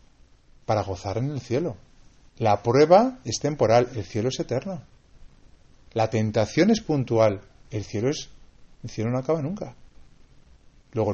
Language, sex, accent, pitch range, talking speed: Spanish, male, Spanish, 105-135 Hz, 130 wpm